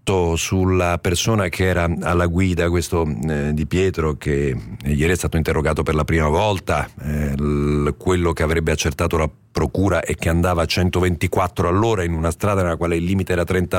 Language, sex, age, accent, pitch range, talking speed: Italian, male, 50-69, native, 85-120 Hz, 185 wpm